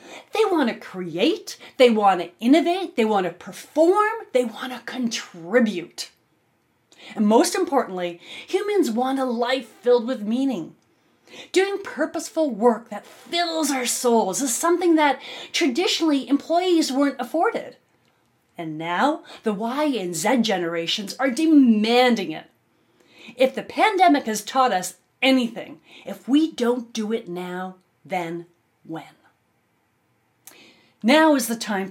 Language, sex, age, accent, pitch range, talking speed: English, female, 30-49, American, 200-305 Hz, 130 wpm